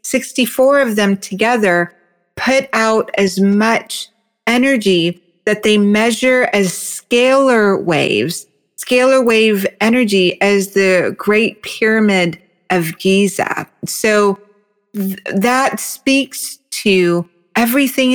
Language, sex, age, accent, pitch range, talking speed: English, female, 40-59, American, 195-230 Hz, 100 wpm